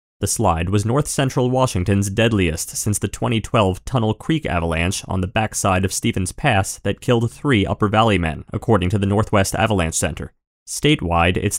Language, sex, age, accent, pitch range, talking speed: English, male, 30-49, American, 95-125 Hz, 165 wpm